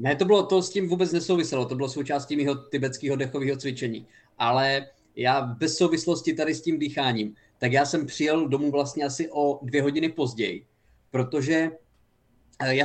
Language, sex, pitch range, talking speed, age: Czech, male, 130-170 Hz, 170 wpm, 20-39